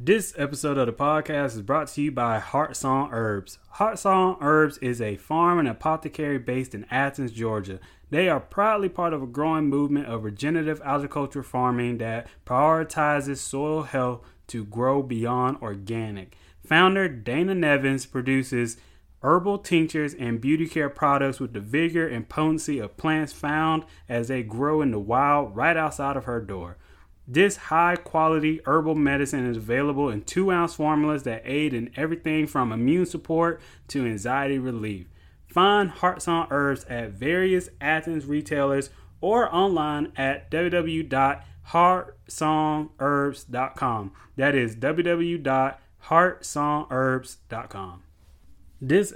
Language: English